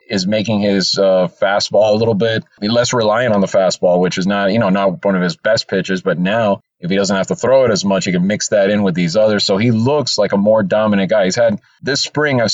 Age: 30-49